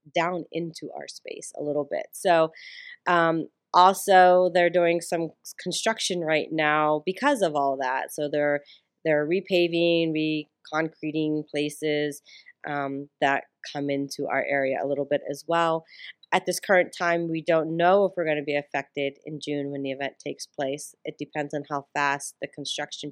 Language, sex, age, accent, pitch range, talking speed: English, female, 30-49, American, 145-180 Hz, 170 wpm